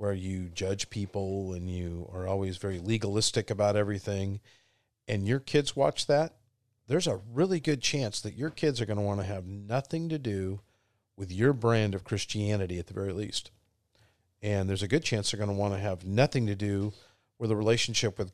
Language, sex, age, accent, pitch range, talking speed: English, male, 50-69, American, 100-125 Hz, 200 wpm